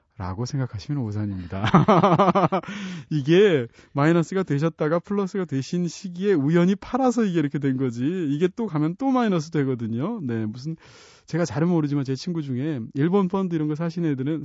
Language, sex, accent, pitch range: Korean, male, native, 120-180 Hz